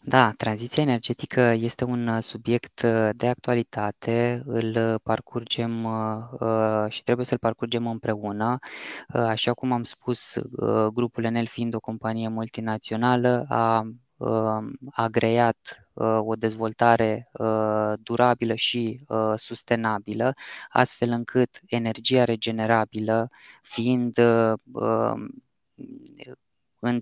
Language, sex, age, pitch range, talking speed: Romanian, female, 20-39, 110-120 Hz, 85 wpm